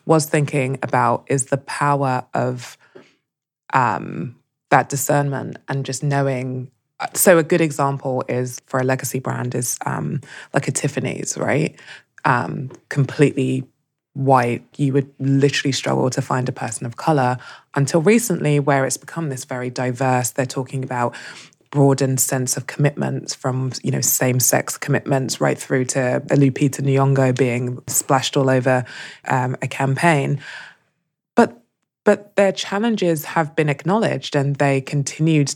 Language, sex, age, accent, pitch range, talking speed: English, female, 20-39, British, 130-145 Hz, 140 wpm